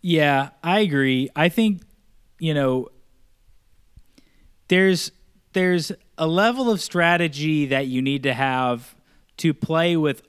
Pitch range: 125-175 Hz